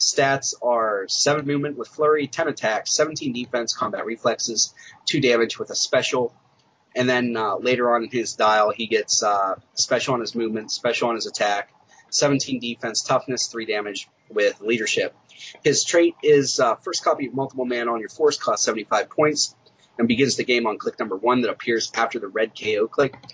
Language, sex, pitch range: English, male, 115-145 Hz